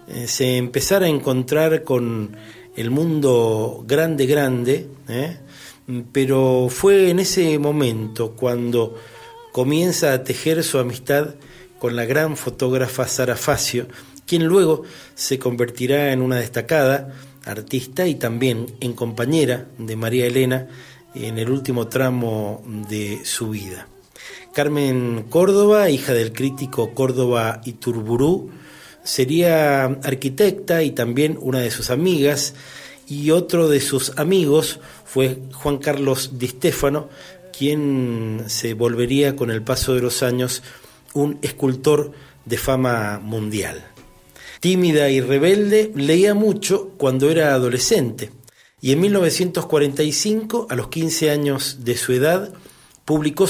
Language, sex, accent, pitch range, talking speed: Spanish, male, Argentinian, 120-150 Hz, 120 wpm